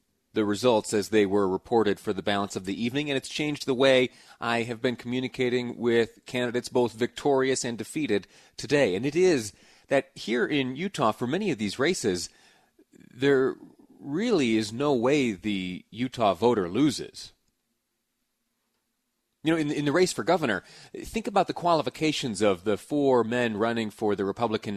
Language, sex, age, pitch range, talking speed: English, male, 30-49, 110-145 Hz, 165 wpm